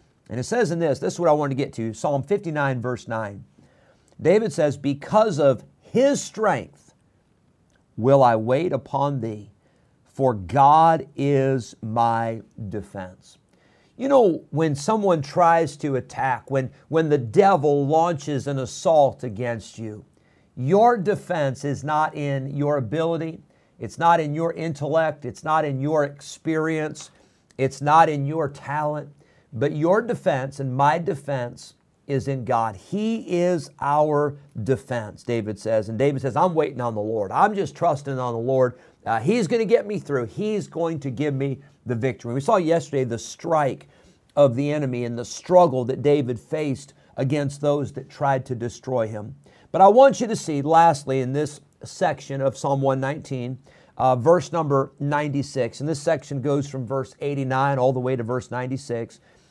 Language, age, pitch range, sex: English, 50-69, 125-160 Hz, male